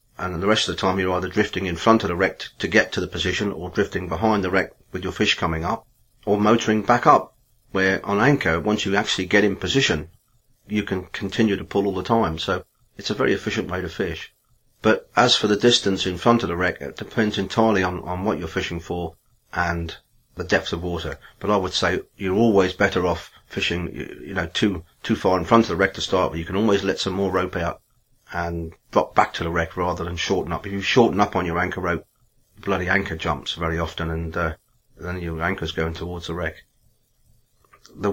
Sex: male